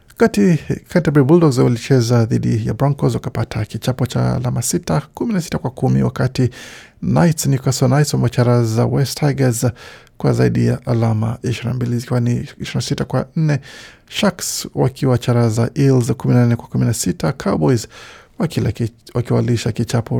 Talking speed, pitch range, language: 135 wpm, 115-130 Hz, Swahili